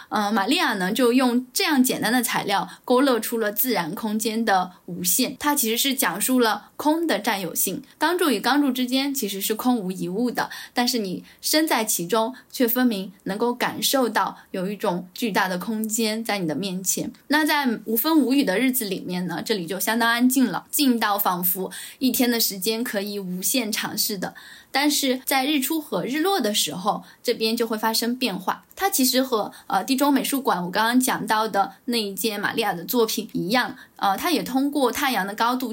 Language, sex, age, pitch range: Chinese, female, 10-29, 205-260 Hz